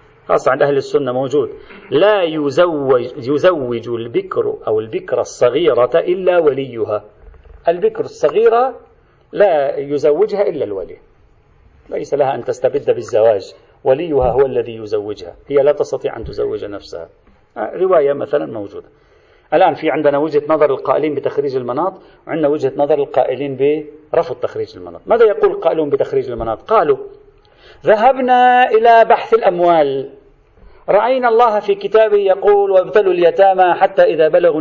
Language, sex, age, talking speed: Arabic, male, 40-59, 125 wpm